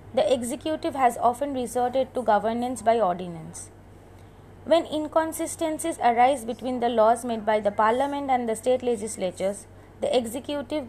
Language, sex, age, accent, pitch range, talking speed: English, female, 20-39, Indian, 215-265 Hz, 140 wpm